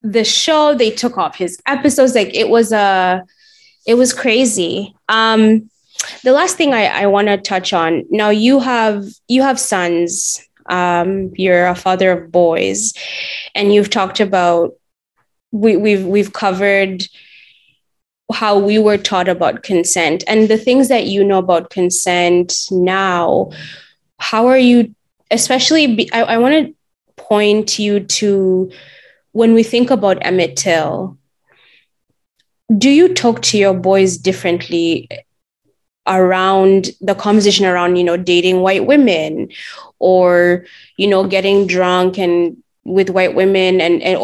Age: 20-39